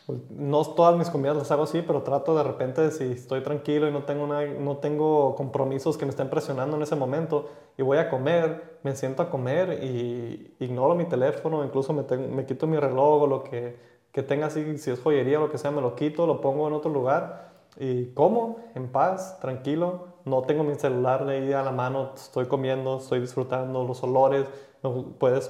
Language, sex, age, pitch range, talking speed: Spanish, male, 20-39, 130-150 Hz, 210 wpm